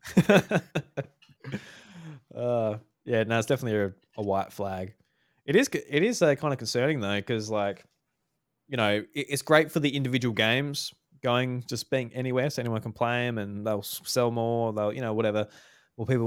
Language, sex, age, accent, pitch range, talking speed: English, male, 20-39, Australian, 105-130 Hz, 175 wpm